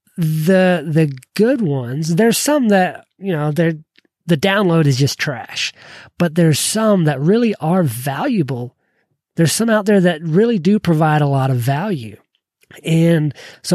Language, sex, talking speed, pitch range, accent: English, male, 155 wpm, 145-185 Hz, American